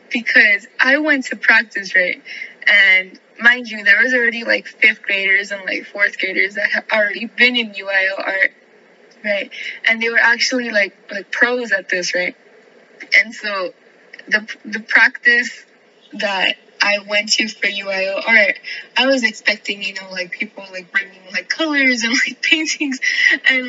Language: English